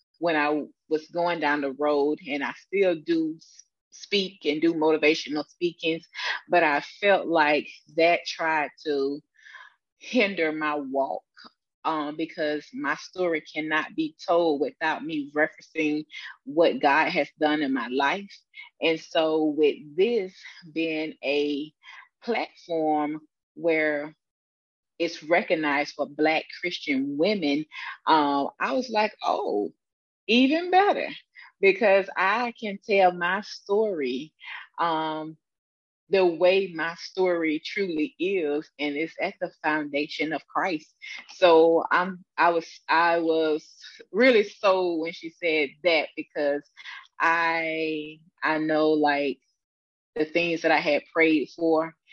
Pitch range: 150-180 Hz